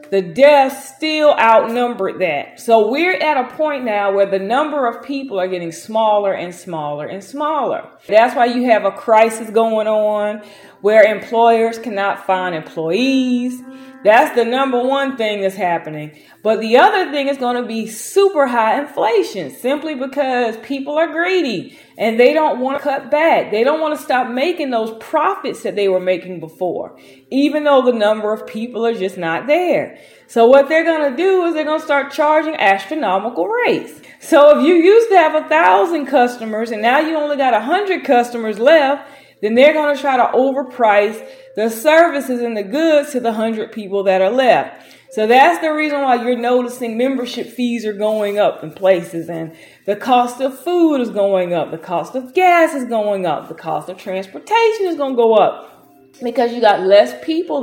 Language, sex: English, female